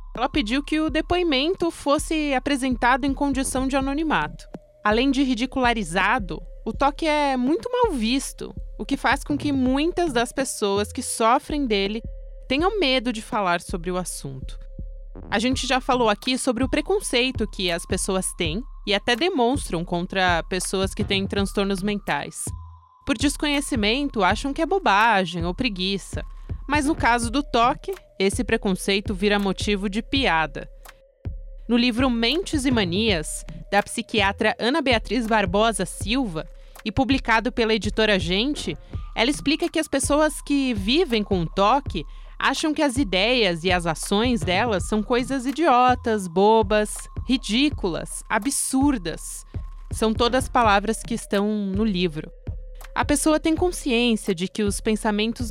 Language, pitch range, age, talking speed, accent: Portuguese, 205-280 Hz, 20-39, 145 wpm, Brazilian